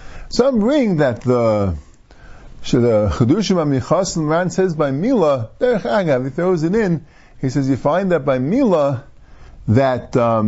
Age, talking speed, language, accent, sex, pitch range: 50-69, 135 wpm, English, American, male, 130-175 Hz